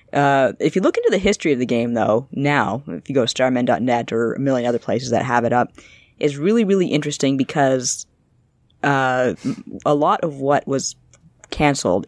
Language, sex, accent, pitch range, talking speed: English, female, American, 125-155 Hz, 190 wpm